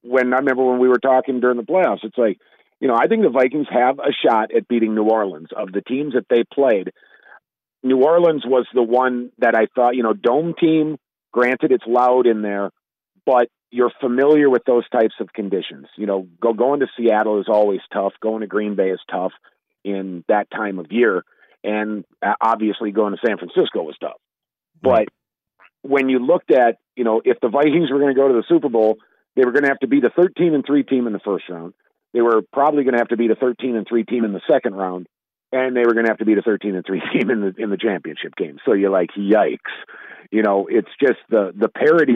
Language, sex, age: English, male, 40-59